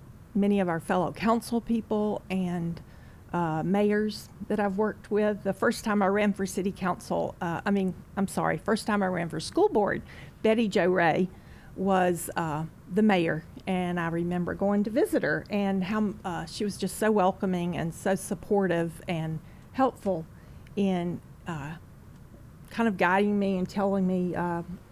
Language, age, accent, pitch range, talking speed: English, 50-69, American, 175-205 Hz, 170 wpm